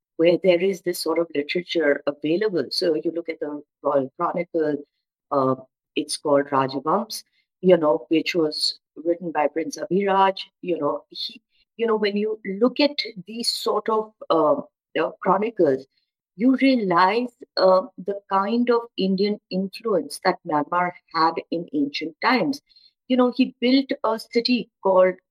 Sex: female